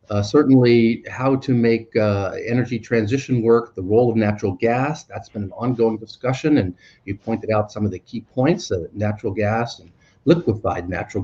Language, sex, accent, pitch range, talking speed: English, male, American, 105-130 Hz, 180 wpm